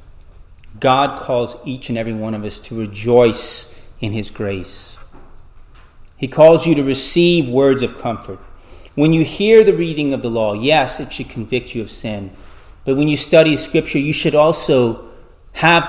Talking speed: 170 wpm